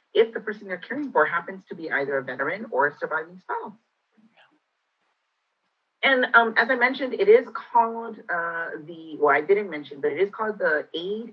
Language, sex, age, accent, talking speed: English, female, 30-49, American, 190 wpm